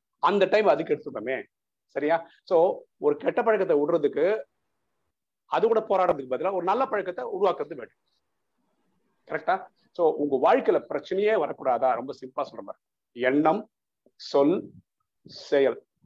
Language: Tamil